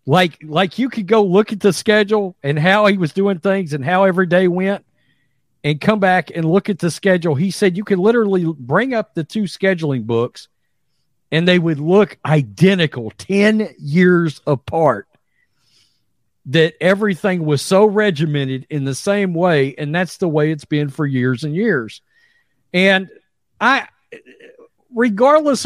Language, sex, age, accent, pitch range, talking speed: English, male, 50-69, American, 145-200 Hz, 160 wpm